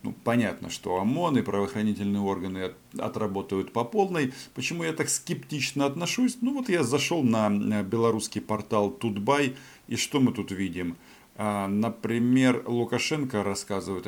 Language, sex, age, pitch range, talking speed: Russian, male, 40-59, 100-135 Hz, 130 wpm